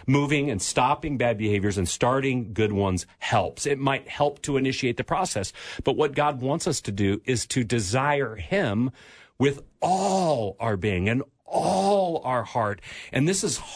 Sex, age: male, 40-59